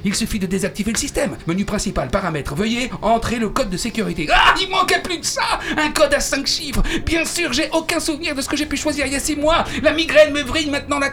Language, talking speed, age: French, 260 wpm, 60-79